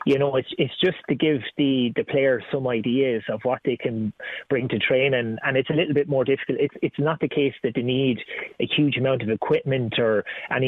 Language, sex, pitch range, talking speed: English, male, 120-140 Hz, 235 wpm